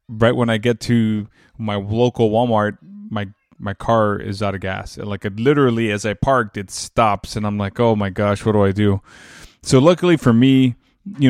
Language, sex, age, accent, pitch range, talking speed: English, male, 20-39, American, 110-145 Hz, 200 wpm